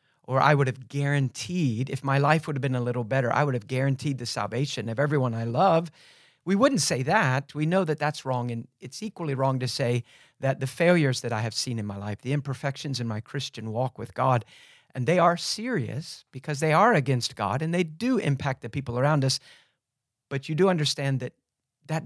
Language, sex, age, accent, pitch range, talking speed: English, male, 40-59, American, 120-155 Hz, 220 wpm